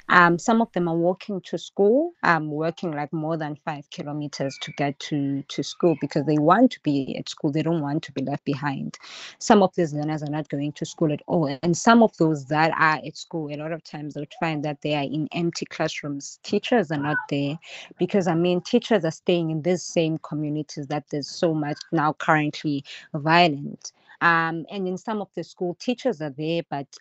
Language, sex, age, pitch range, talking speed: English, female, 20-39, 150-175 Hz, 215 wpm